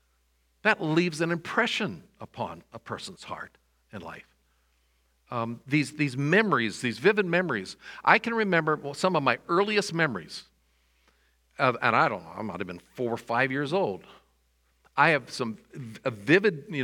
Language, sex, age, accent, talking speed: English, male, 50-69, American, 165 wpm